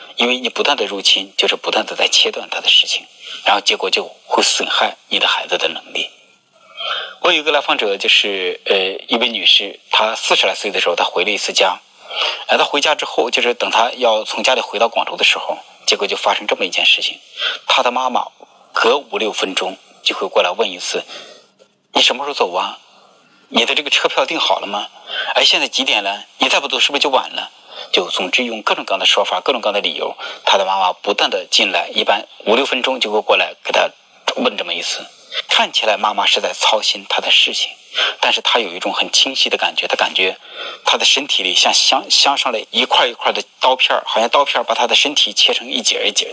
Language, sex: Chinese, male